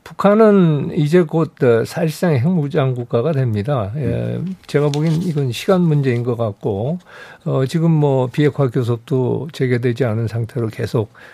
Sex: male